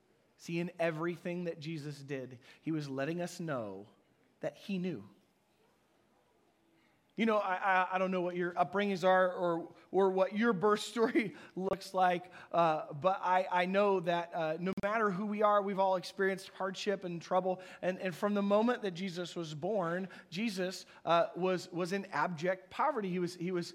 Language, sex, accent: English, male, American